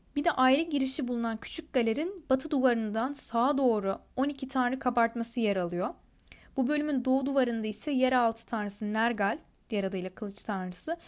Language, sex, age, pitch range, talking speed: Turkish, female, 10-29, 225-265 Hz, 150 wpm